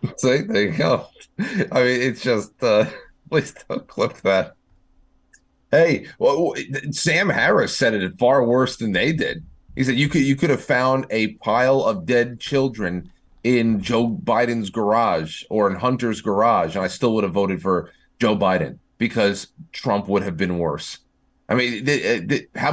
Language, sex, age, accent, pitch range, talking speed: English, male, 30-49, American, 95-130 Hz, 175 wpm